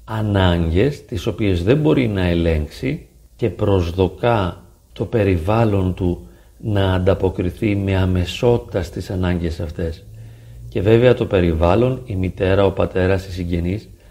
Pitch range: 90-110 Hz